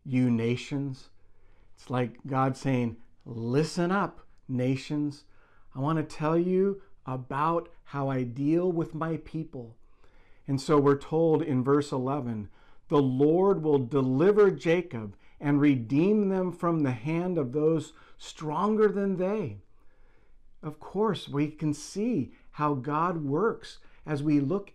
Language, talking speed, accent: English, 135 wpm, American